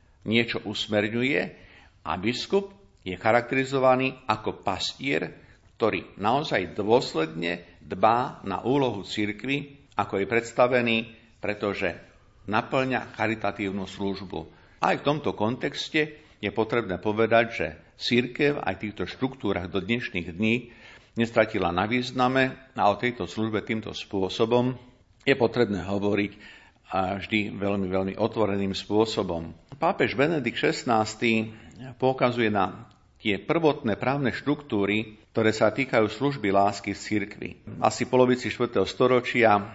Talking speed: 115 wpm